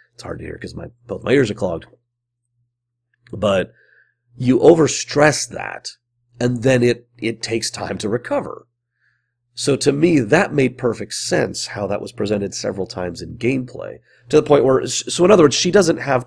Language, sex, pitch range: English, male, 110-125 Hz